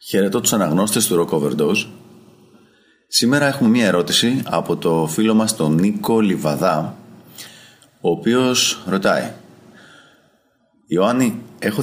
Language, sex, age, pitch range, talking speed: Greek, male, 30-49, 80-110 Hz, 110 wpm